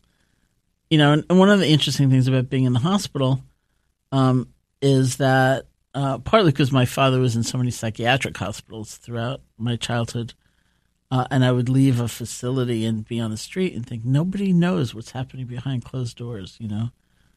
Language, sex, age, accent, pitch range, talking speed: English, male, 50-69, American, 110-130 Hz, 185 wpm